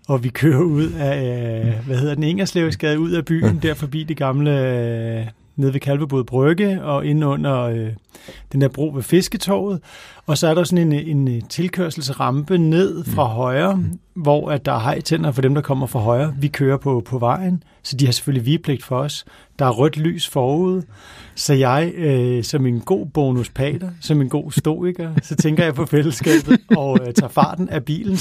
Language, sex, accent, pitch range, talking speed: Danish, male, native, 135-170 Hz, 190 wpm